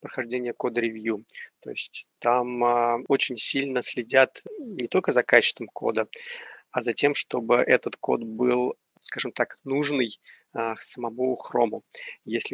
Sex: male